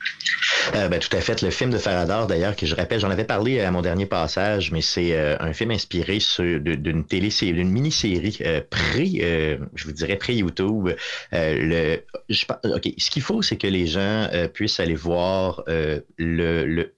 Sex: male